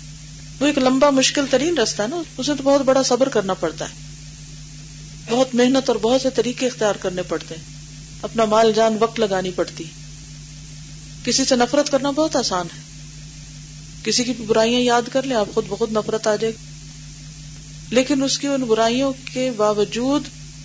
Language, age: Urdu, 40-59